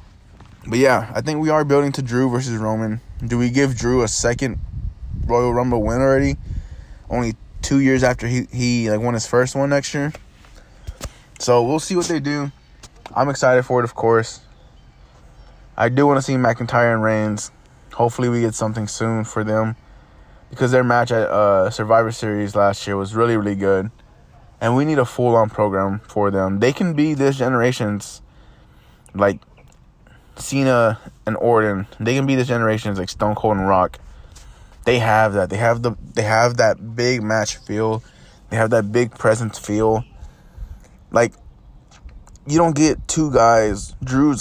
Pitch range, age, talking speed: 105-125 Hz, 20-39, 170 wpm